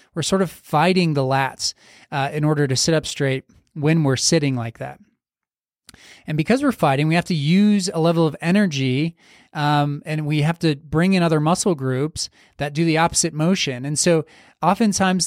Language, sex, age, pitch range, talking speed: English, male, 30-49, 140-170 Hz, 190 wpm